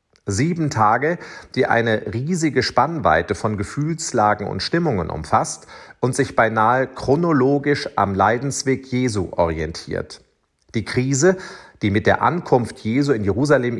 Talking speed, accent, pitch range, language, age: 120 wpm, German, 105-145 Hz, German, 40-59